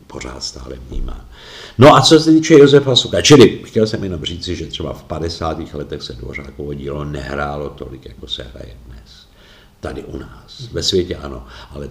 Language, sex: Czech, male